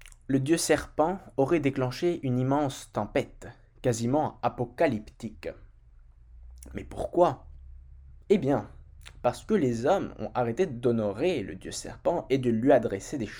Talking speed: 130 wpm